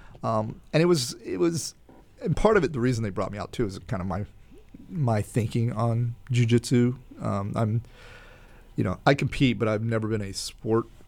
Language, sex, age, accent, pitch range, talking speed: English, male, 30-49, American, 95-120 Hz, 200 wpm